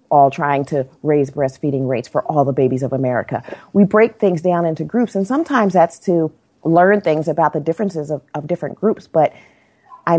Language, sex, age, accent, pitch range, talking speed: English, female, 40-59, American, 145-185 Hz, 195 wpm